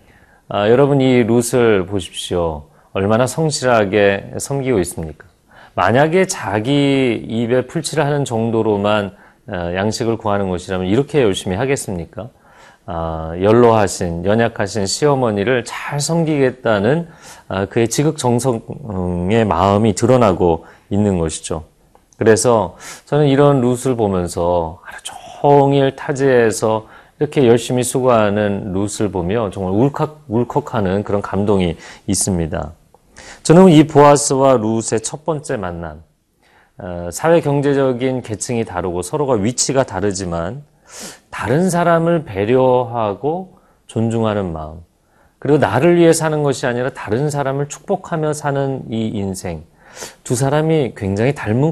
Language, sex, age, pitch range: Korean, male, 40-59, 95-140 Hz